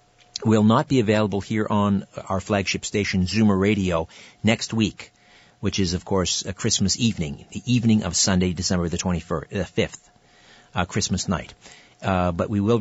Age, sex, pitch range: 50-69, male, 95-120 Hz